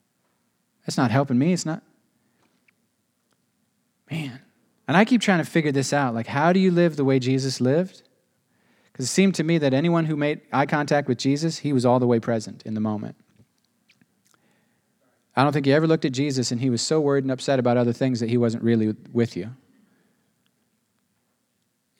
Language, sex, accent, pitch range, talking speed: English, male, American, 120-165 Hz, 195 wpm